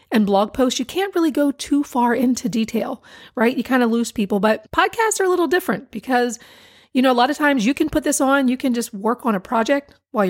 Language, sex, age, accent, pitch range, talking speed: English, female, 40-59, American, 220-285 Hz, 250 wpm